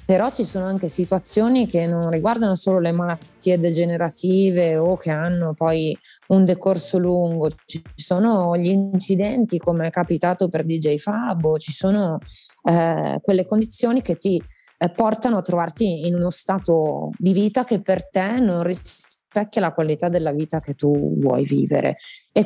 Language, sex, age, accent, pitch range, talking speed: Italian, female, 20-39, native, 170-205 Hz, 160 wpm